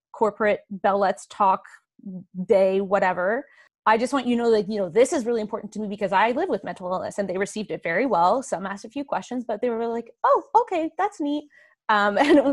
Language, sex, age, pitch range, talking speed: English, female, 20-39, 185-255 Hz, 230 wpm